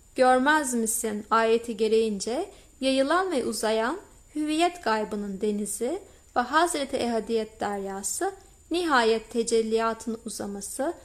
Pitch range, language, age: 215-255 Hz, Turkish, 30-49